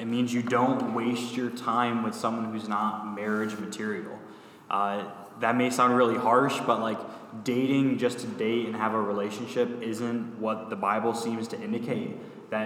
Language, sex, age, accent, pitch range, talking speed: English, male, 10-29, American, 110-120 Hz, 175 wpm